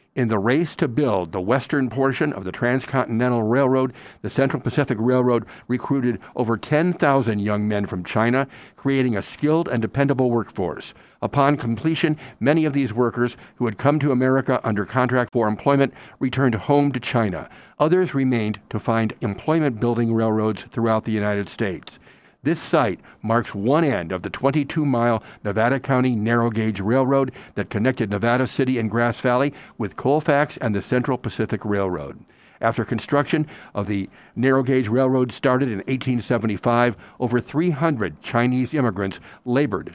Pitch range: 115-135 Hz